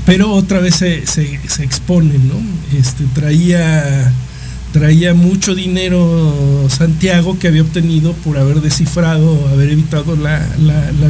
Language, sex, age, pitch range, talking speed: Spanish, male, 50-69, 130-170 Hz, 130 wpm